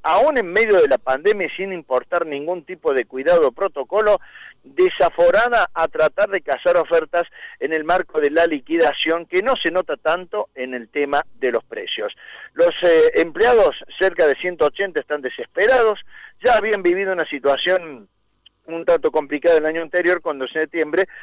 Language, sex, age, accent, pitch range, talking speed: Spanish, male, 50-69, Argentinian, 160-225 Hz, 165 wpm